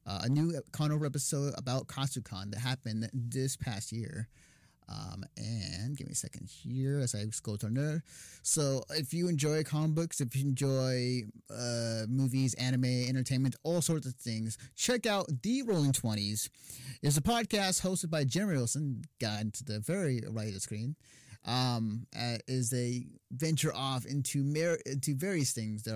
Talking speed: 170 wpm